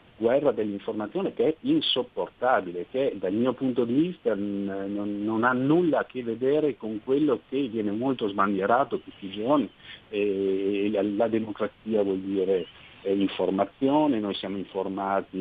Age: 50-69